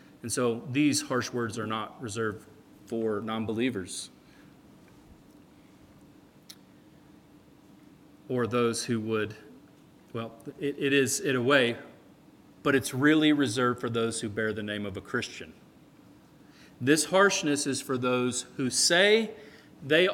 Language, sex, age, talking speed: English, male, 40-59, 130 wpm